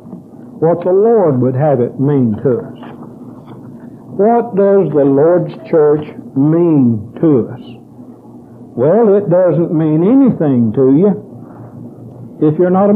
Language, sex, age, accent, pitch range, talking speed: English, male, 60-79, American, 145-200 Hz, 130 wpm